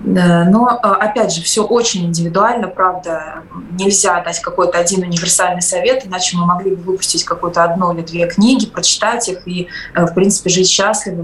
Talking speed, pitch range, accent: 160 wpm, 175-210 Hz, native